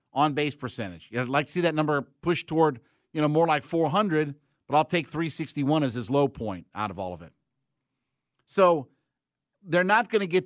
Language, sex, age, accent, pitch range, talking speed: English, male, 50-69, American, 130-165 Hz, 195 wpm